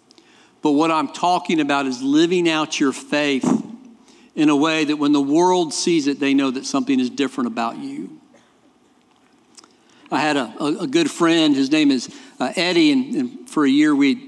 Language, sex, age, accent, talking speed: English, male, 50-69, American, 185 wpm